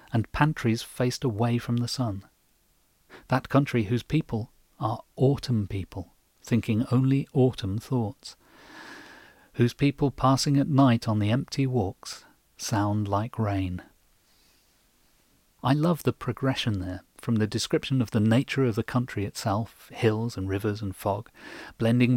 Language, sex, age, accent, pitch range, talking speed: English, male, 40-59, British, 110-135 Hz, 140 wpm